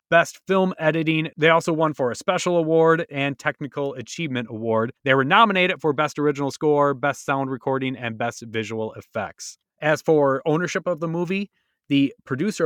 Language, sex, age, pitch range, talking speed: English, male, 30-49, 130-165 Hz, 170 wpm